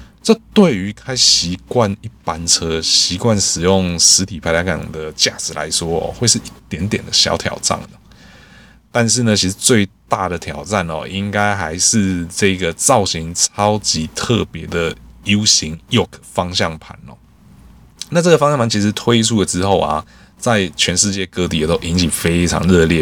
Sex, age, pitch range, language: male, 20-39, 85-105 Hz, Chinese